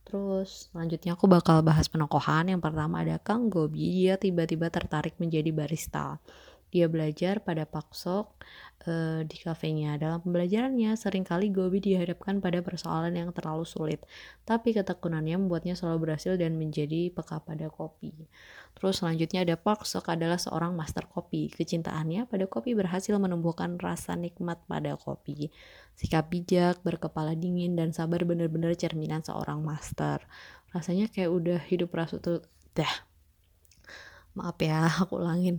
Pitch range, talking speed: 160-185 Hz, 140 wpm